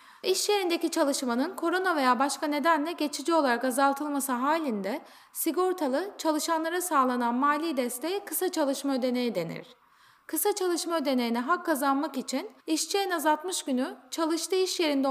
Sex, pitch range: female, 265-350 Hz